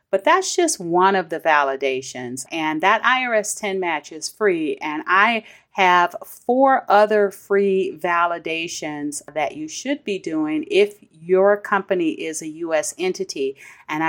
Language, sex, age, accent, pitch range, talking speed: English, female, 40-59, American, 165-215 Hz, 145 wpm